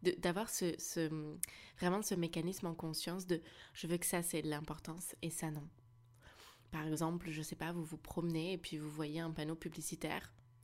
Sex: female